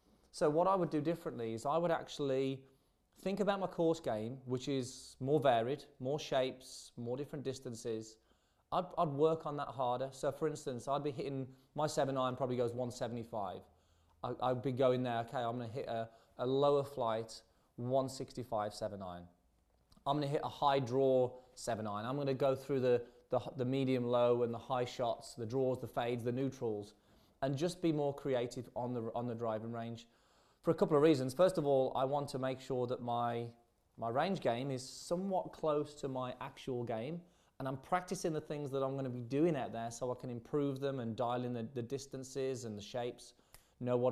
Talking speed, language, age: 205 wpm, English, 20-39